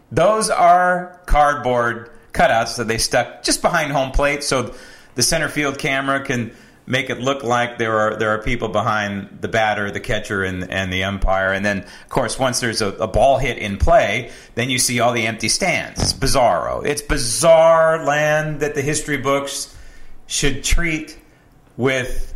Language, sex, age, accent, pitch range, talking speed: English, male, 40-59, American, 115-150 Hz, 175 wpm